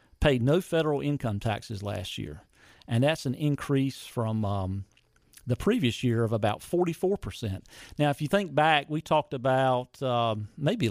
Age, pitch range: 40-59, 120-150 Hz